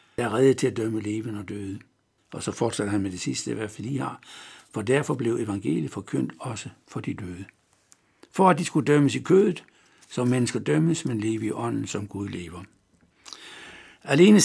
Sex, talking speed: male, 185 wpm